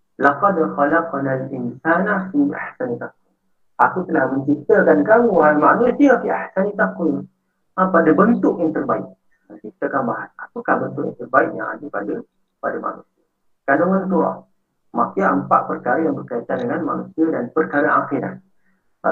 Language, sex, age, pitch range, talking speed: Malay, male, 50-69, 145-180 Hz, 120 wpm